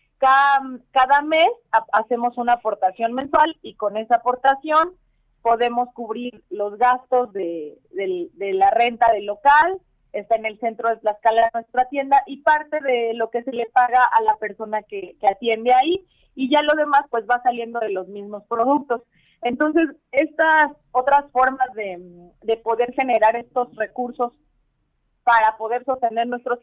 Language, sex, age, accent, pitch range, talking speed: Spanish, female, 30-49, Mexican, 215-260 Hz, 155 wpm